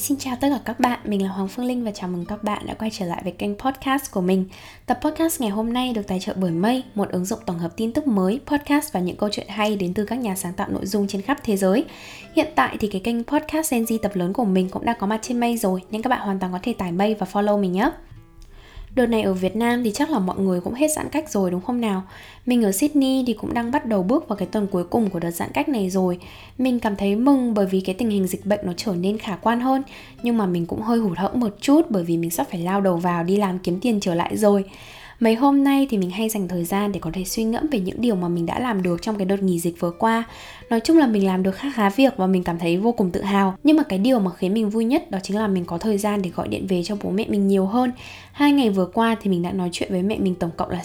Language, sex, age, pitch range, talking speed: Vietnamese, female, 10-29, 190-245 Hz, 305 wpm